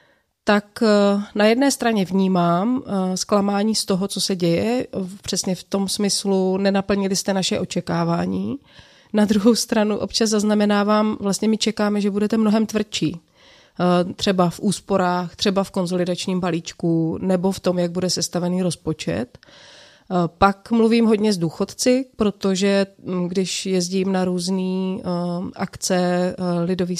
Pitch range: 185-210 Hz